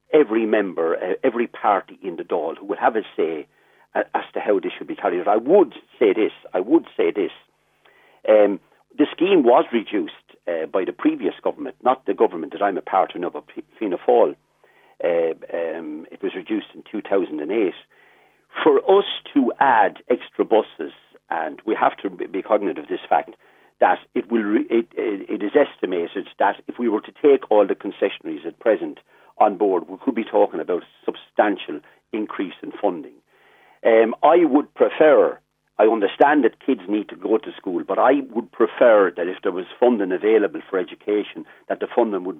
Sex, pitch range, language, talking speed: male, 330-430 Hz, English, 185 wpm